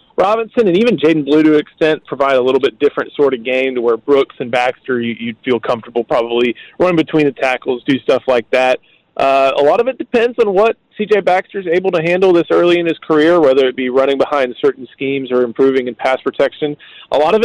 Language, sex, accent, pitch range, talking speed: English, male, American, 130-195 Hz, 230 wpm